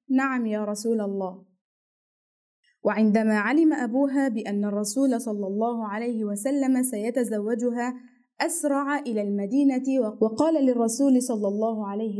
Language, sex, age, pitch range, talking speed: Arabic, female, 20-39, 210-265 Hz, 110 wpm